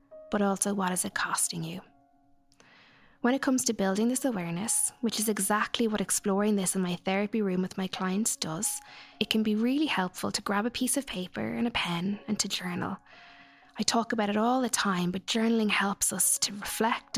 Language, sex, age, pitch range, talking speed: English, female, 20-39, 195-225 Hz, 205 wpm